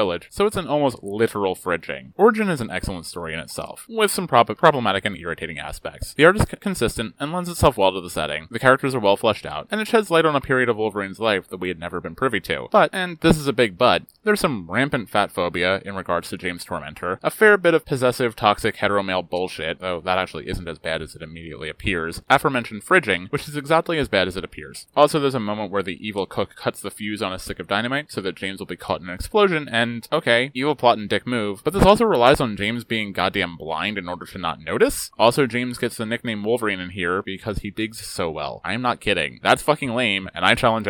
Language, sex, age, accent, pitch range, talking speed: English, male, 30-49, American, 95-135 Hz, 250 wpm